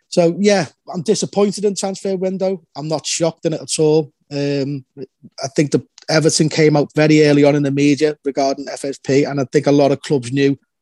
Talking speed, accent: 205 wpm, British